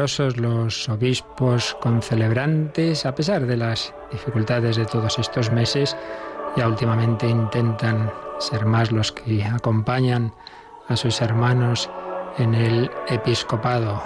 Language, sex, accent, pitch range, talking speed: Spanish, male, Spanish, 115-135 Hz, 110 wpm